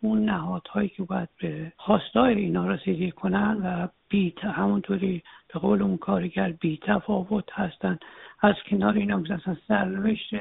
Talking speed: 140 wpm